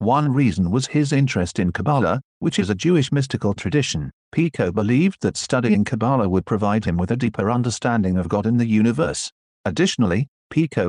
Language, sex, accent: Chinese, male, British